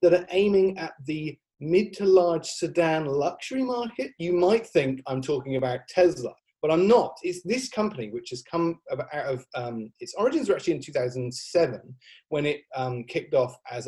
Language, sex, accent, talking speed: English, male, British, 180 wpm